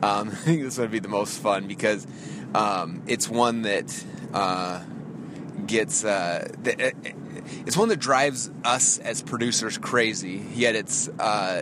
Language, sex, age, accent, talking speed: English, male, 20-39, American, 140 wpm